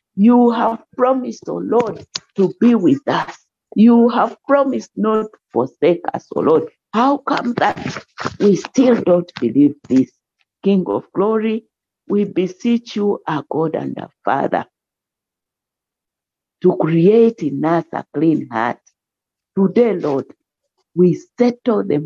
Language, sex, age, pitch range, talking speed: English, female, 50-69, 180-275 Hz, 135 wpm